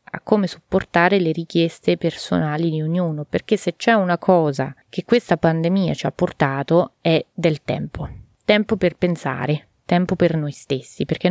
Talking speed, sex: 160 wpm, female